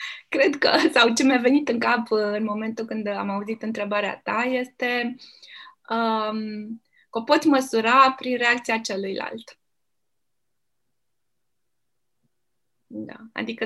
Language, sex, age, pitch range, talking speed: Romanian, female, 20-39, 210-260 Hz, 105 wpm